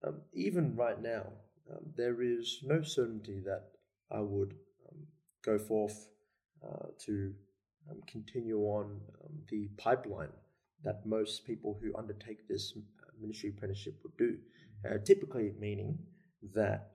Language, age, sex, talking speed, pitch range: English, 20-39, male, 130 wpm, 100-155 Hz